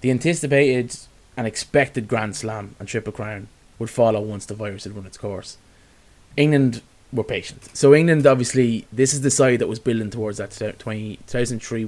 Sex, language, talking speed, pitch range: male, English, 170 wpm, 110-130 Hz